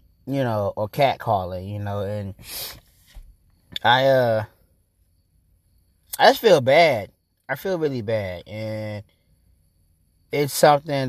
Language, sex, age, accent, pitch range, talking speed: English, male, 20-39, American, 90-125 Hz, 110 wpm